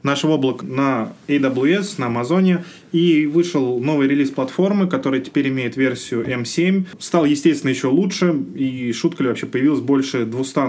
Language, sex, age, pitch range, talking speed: Russian, male, 20-39, 120-150 Hz, 150 wpm